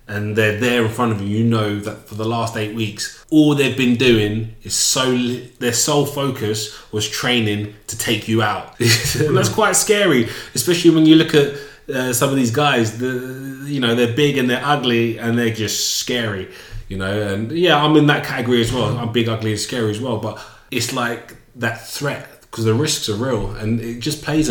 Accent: British